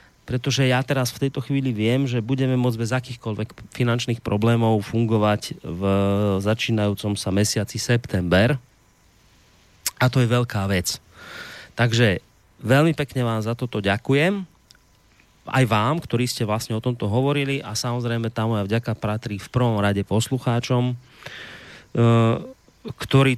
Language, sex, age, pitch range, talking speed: Slovak, male, 30-49, 105-125 Hz, 130 wpm